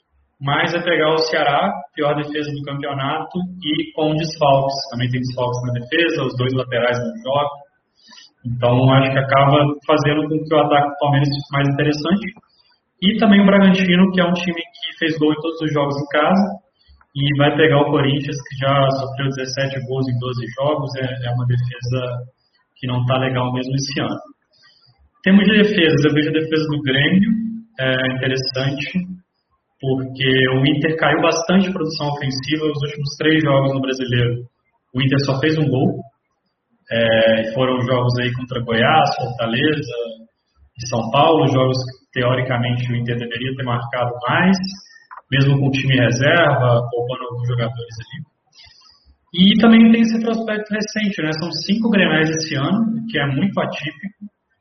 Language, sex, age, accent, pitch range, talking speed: Portuguese, male, 20-39, Brazilian, 130-160 Hz, 165 wpm